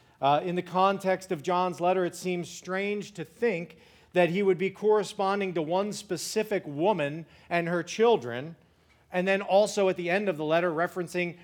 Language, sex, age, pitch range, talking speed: English, male, 40-59, 145-190 Hz, 180 wpm